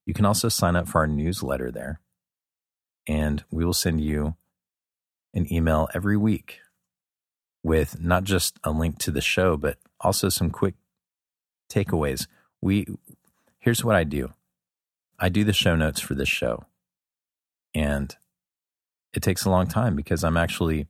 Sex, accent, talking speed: male, American, 150 wpm